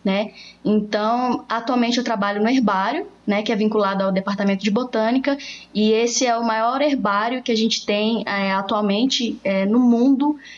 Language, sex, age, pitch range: Portuguese, female, 10-29, 210-245 Hz